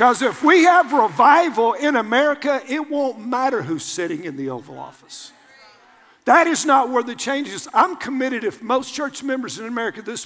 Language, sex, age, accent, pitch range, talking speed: English, male, 50-69, American, 245-350 Hz, 185 wpm